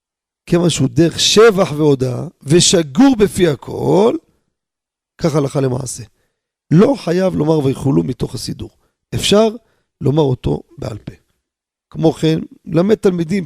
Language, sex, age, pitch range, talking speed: Hebrew, male, 40-59, 135-185 Hz, 110 wpm